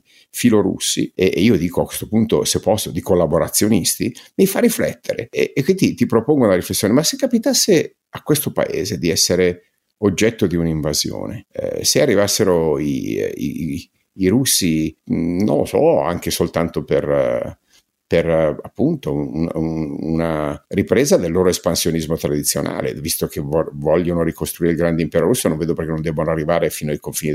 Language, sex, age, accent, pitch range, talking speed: Italian, male, 50-69, native, 80-100 Hz, 155 wpm